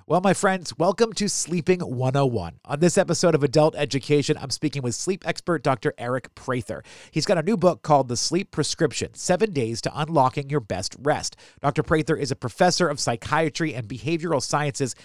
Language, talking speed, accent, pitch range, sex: English, 185 wpm, American, 130-165 Hz, male